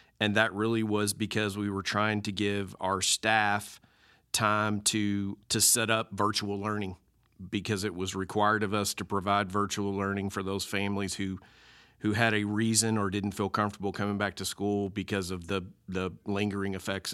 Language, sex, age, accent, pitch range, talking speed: English, male, 40-59, American, 100-115 Hz, 180 wpm